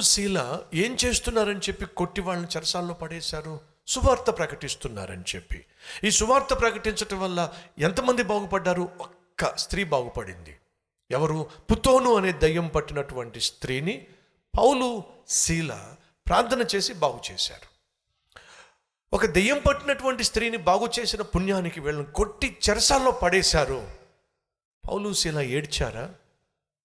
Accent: native